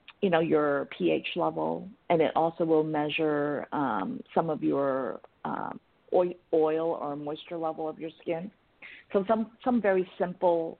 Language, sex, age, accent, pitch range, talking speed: English, female, 50-69, American, 150-190 Hz, 150 wpm